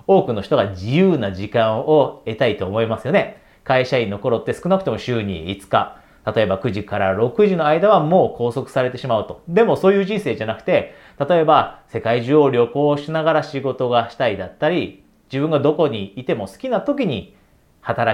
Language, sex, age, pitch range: Japanese, male, 40-59, 115-155 Hz